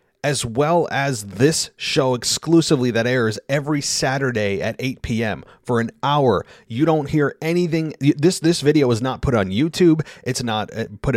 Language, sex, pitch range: English, male, 110-150 Hz